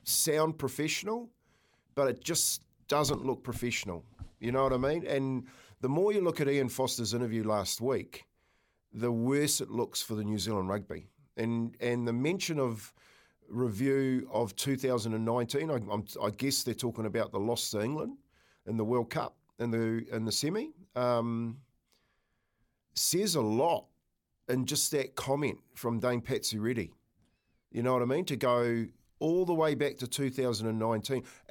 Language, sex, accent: English, male, Australian